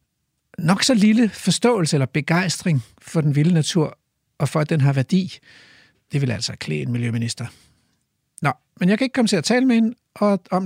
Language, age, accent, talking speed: Danish, 60-79, native, 190 wpm